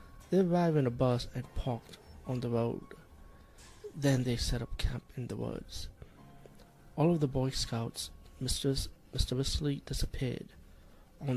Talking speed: 145 wpm